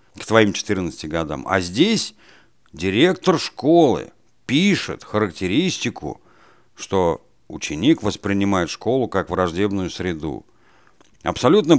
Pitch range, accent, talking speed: 95-115 Hz, native, 90 wpm